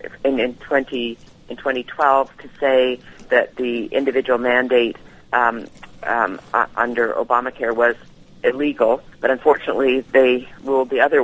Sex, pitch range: female, 125-140 Hz